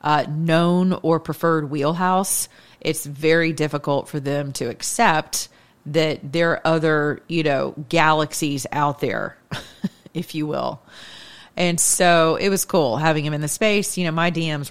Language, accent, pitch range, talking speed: English, American, 145-180 Hz, 155 wpm